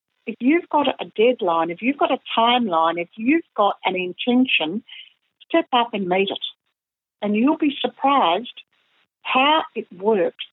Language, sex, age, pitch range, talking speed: English, female, 60-79, 185-245 Hz, 155 wpm